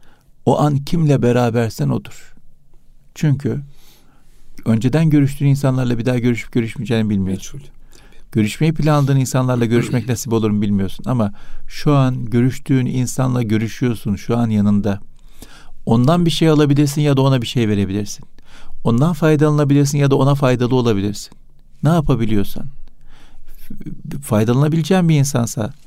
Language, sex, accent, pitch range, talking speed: Turkish, male, native, 110-145 Hz, 125 wpm